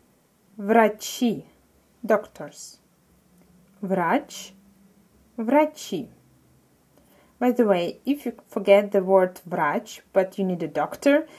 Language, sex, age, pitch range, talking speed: Russian, female, 20-39, 195-245 Hz, 95 wpm